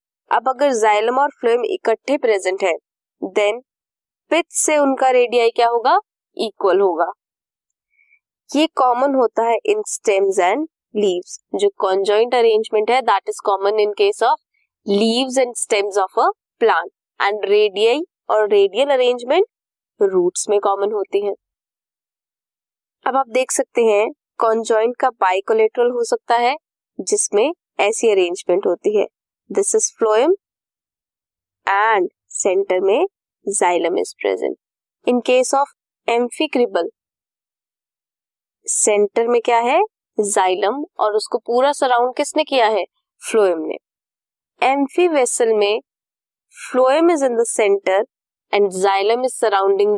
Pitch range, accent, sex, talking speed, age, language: 215-335 Hz, Indian, female, 125 wpm, 20-39, English